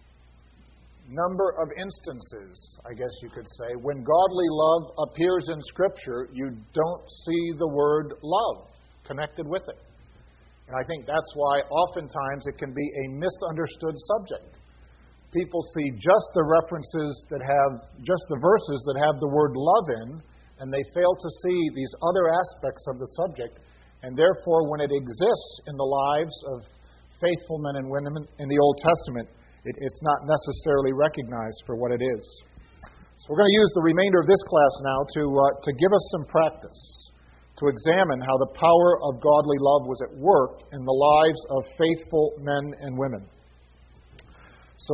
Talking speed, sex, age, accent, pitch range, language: 170 wpm, male, 50-69, American, 120-160 Hz, English